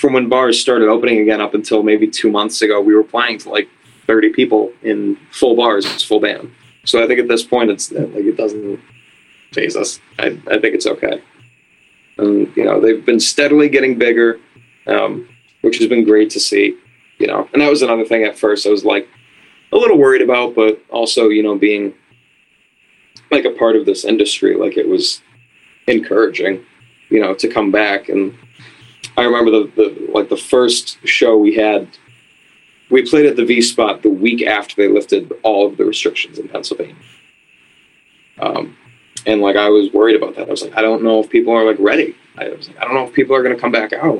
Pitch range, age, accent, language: 110-150 Hz, 20-39, American, English